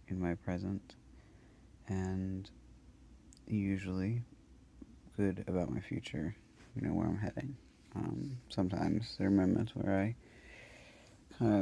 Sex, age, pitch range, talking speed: male, 30-49, 80-100 Hz, 115 wpm